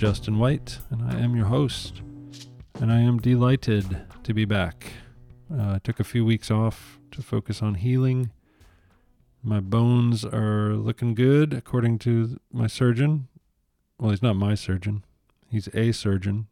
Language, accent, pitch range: English, American, 100-120 Hz